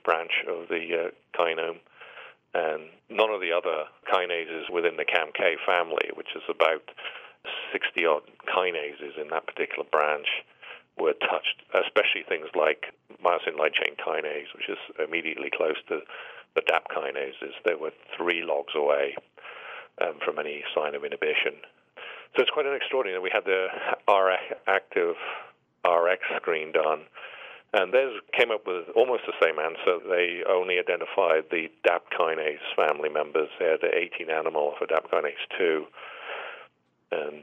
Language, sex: English, male